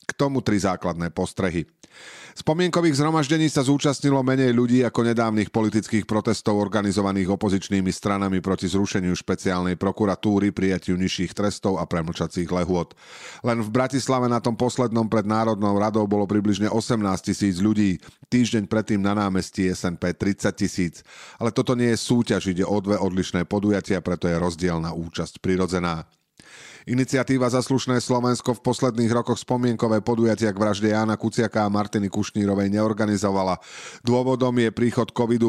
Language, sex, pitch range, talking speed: Slovak, male, 95-120 Hz, 145 wpm